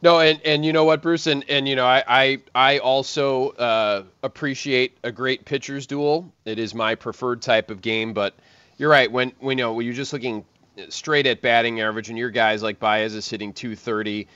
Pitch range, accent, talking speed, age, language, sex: 105-135 Hz, American, 215 wpm, 30-49, English, male